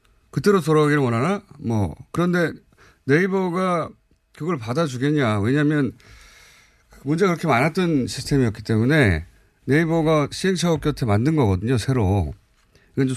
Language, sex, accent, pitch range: Korean, male, native, 110-160 Hz